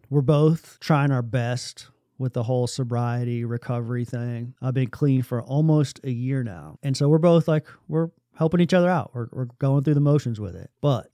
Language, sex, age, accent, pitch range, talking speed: English, male, 30-49, American, 120-150 Hz, 205 wpm